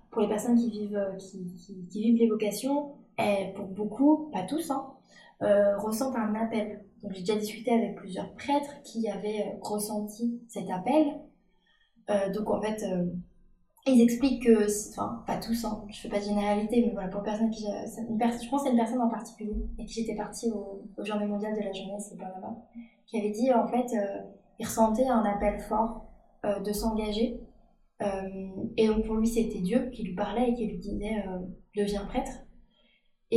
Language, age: French, 20-39